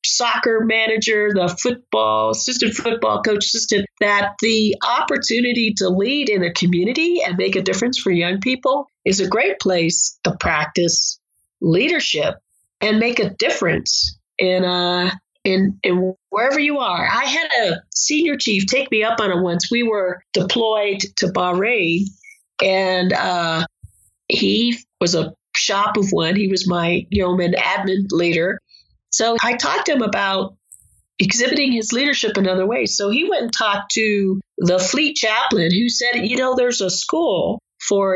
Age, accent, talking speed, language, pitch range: 50-69, American, 155 wpm, English, 185-245 Hz